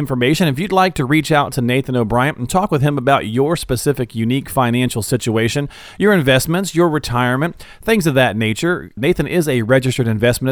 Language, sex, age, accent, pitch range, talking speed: English, male, 40-59, American, 120-160 Hz, 190 wpm